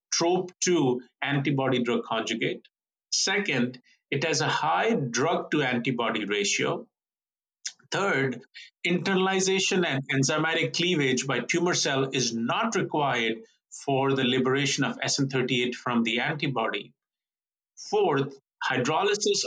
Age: 50-69